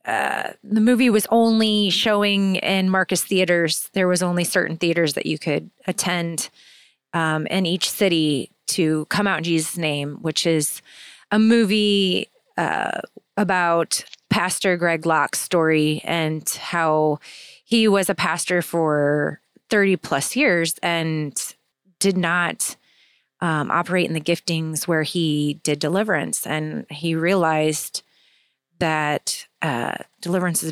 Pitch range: 155-185 Hz